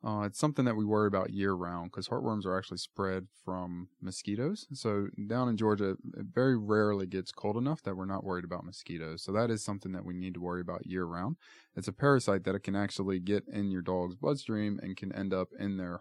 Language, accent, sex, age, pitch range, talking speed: English, American, male, 20-39, 90-110 Hz, 220 wpm